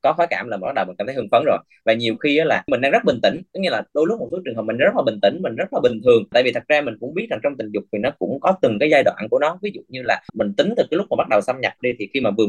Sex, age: male, 20-39